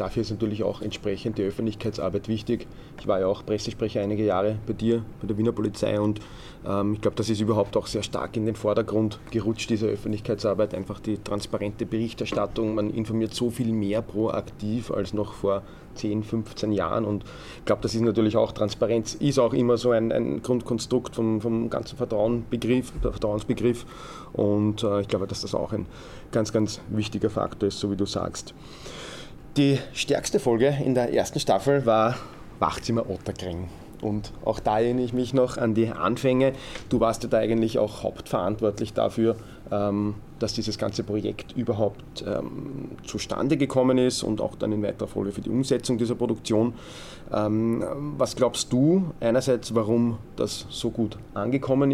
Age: 30-49